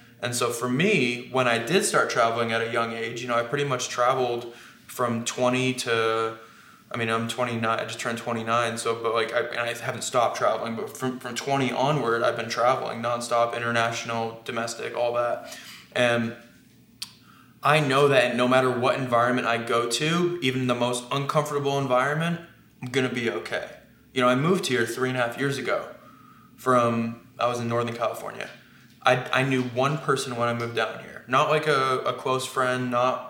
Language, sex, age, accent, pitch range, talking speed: English, male, 20-39, American, 120-140 Hz, 190 wpm